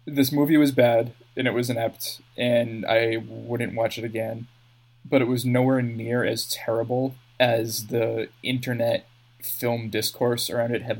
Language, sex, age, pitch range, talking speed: English, male, 20-39, 115-125 Hz, 160 wpm